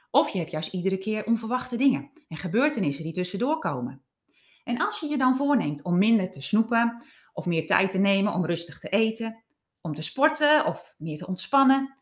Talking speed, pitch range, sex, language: 195 wpm, 175-260 Hz, female, Dutch